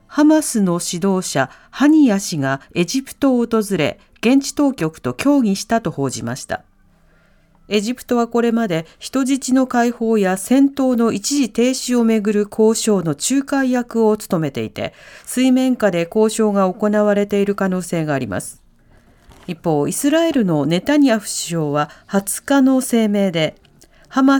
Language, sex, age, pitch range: Japanese, female, 40-59, 175-265 Hz